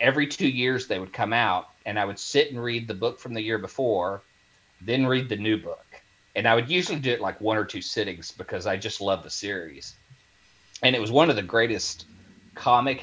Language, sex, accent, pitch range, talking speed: English, male, American, 100-120 Hz, 225 wpm